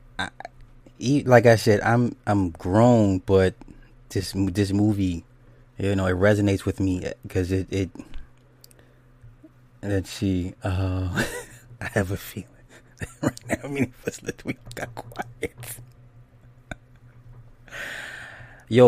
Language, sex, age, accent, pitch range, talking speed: English, male, 20-39, American, 95-120 Hz, 120 wpm